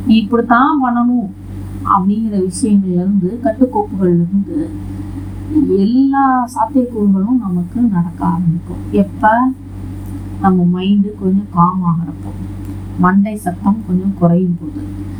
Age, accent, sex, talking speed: 30-49, native, female, 85 wpm